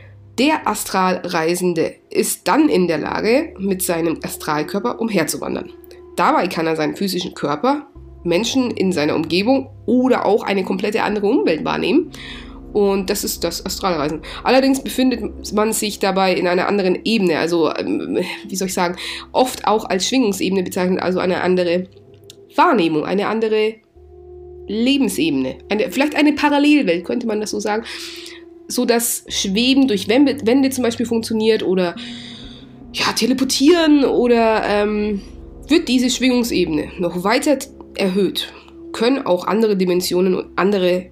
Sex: female